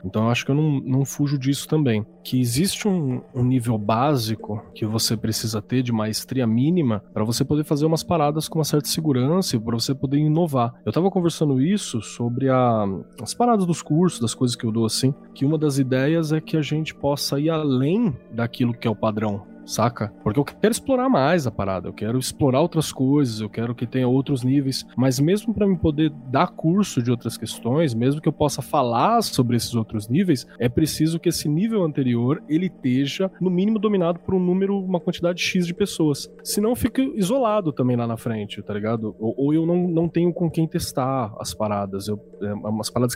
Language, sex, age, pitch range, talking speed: Portuguese, male, 20-39, 115-160 Hz, 210 wpm